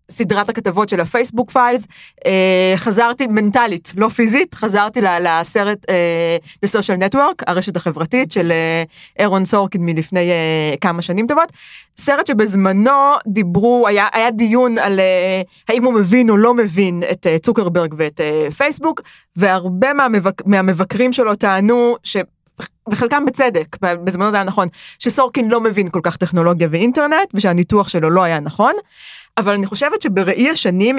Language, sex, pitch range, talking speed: Hebrew, female, 185-245 Hz, 145 wpm